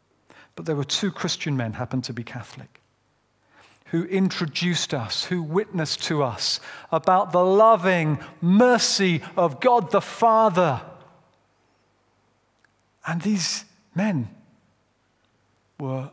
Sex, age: male, 50-69